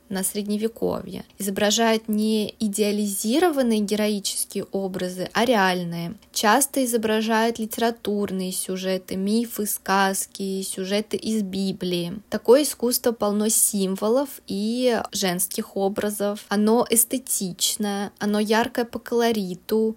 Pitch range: 195-225 Hz